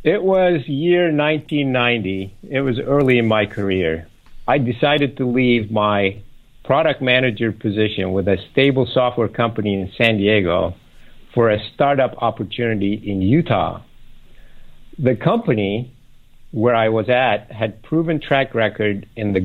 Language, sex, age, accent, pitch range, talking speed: English, male, 60-79, American, 105-130 Hz, 135 wpm